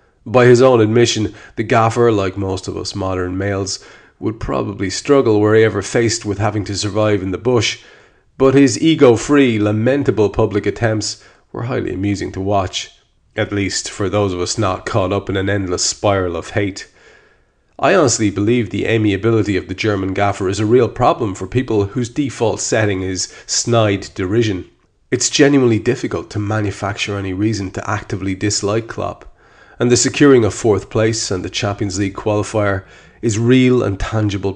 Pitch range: 95-115 Hz